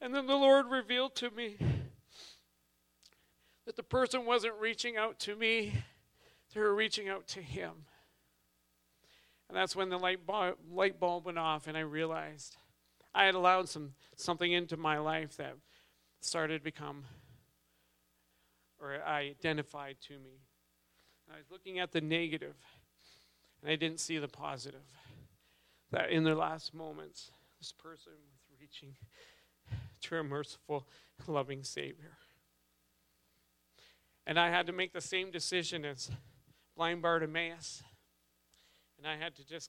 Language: English